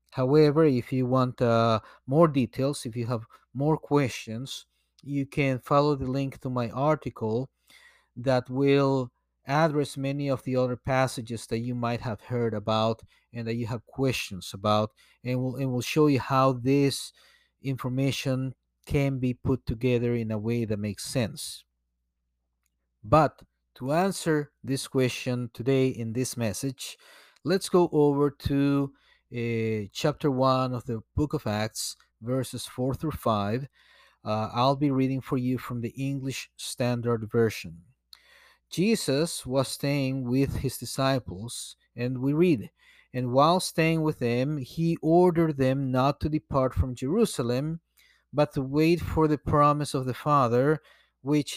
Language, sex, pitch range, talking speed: English, male, 120-140 Hz, 145 wpm